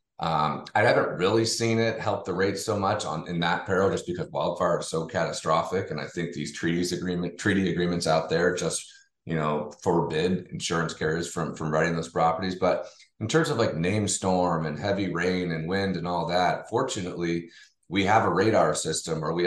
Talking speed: 200 wpm